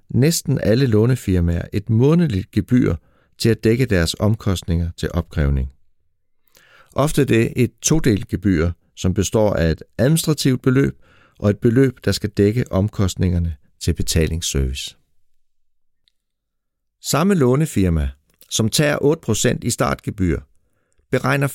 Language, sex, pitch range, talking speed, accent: Danish, male, 90-135 Hz, 115 wpm, native